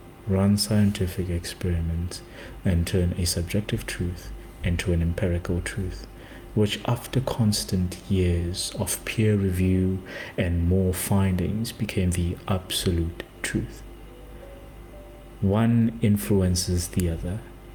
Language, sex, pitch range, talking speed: English, male, 85-105 Hz, 100 wpm